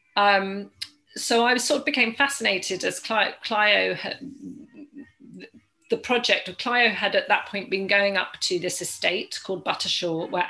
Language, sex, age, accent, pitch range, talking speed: English, female, 40-59, British, 180-240 Hz, 155 wpm